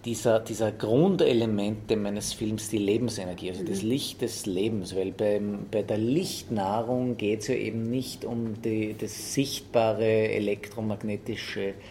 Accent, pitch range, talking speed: Austrian, 100-115 Hz, 135 wpm